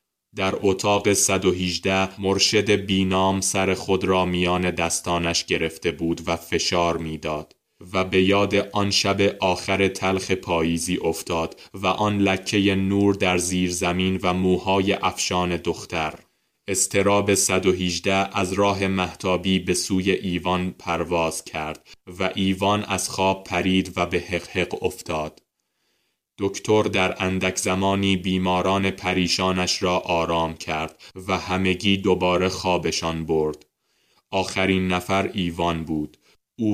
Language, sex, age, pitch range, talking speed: Persian, male, 20-39, 90-95 Hz, 125 wpm